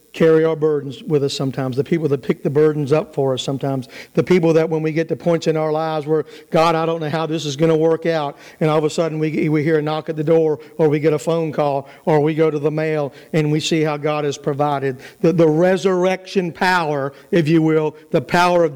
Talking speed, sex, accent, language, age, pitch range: 260 wpm, male, American, English, 50-69, 150-175 Hz